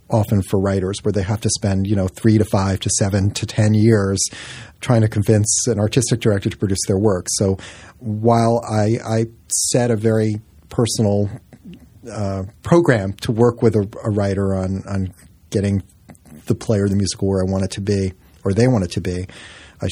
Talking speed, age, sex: 195 wpm, 40-59, male